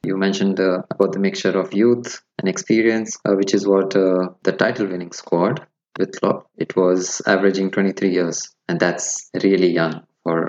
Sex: male